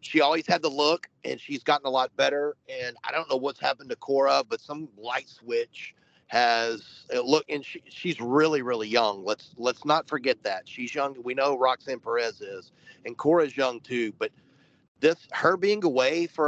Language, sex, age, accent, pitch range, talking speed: English, male, 40-59, American, 135-175 Hz, 195 wpm